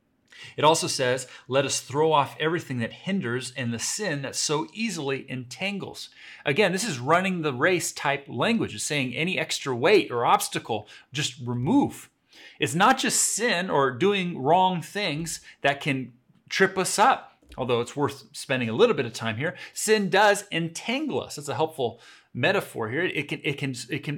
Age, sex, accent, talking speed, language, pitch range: 30-49, male, American, 170 wpm, English, 130-175 Hz